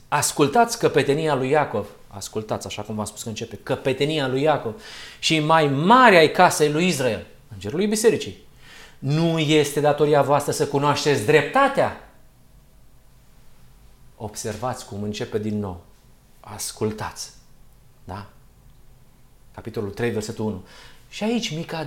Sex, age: male, 30-49